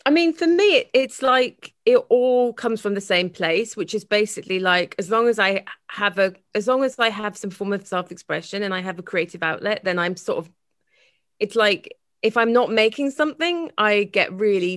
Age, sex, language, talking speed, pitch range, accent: 30-49, female, English, 210 wpm, 185-255 Hz, British